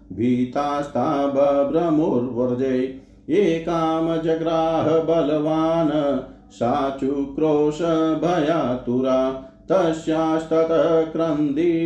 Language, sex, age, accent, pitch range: Hindi, male, 50-69, native, 130-160 Hz